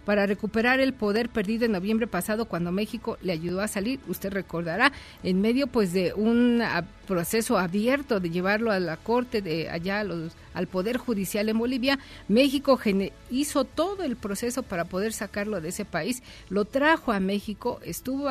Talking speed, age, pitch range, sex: 175 wpm, 50-69, 185-240 Hz, female